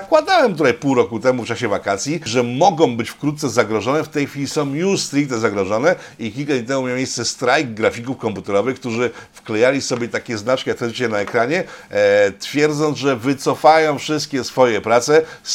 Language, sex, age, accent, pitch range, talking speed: Polish, male, 50-69, native, 120-155 Hz, 175 wpm